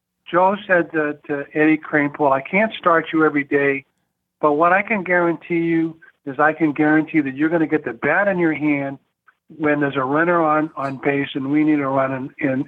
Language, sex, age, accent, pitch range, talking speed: English, male, 50-69, American, 140-170 Hz, 220 wpm